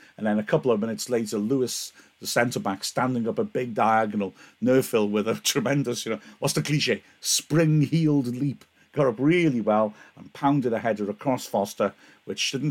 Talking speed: 180 wpm